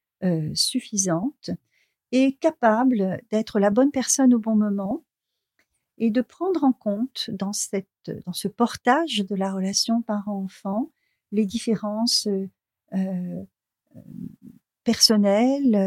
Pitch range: 190-230 Hz